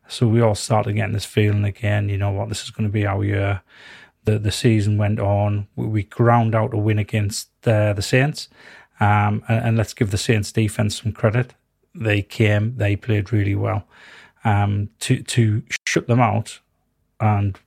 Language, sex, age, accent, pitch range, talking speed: English, male, 30-49, British, 105-115 Hz, 190 wpm